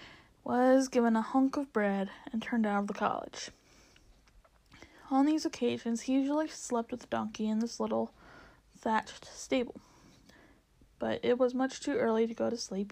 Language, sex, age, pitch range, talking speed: English, female, 10-29, 215-255 Hz, 165 wpm